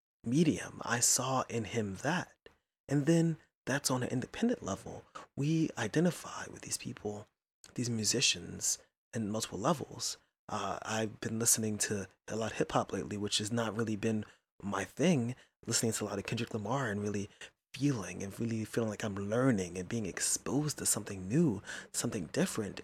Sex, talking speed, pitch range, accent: male, 170 wpm, 100-120 Hz, American